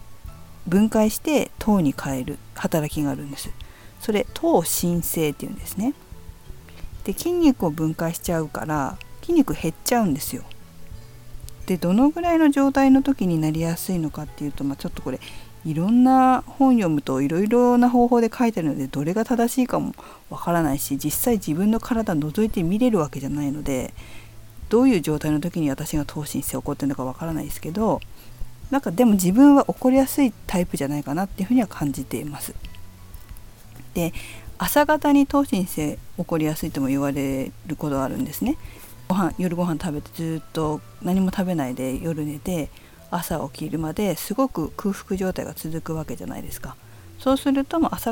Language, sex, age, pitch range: Japanese, female, 50-69, 140-225 Hz